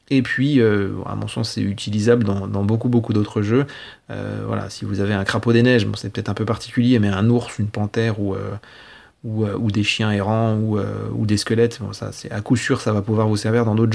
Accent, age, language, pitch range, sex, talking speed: French, 30-49, French, 105-125 Hz, male, 255 wpm